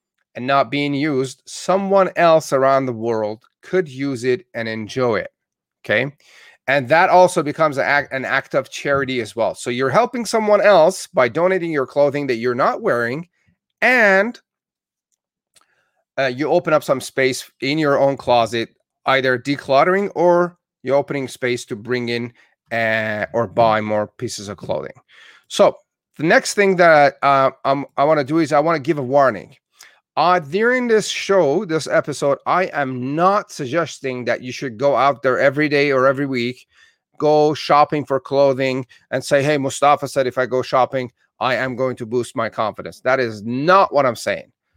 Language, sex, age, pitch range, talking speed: English, male, 30-49, 130-170 Hz, 175 wpm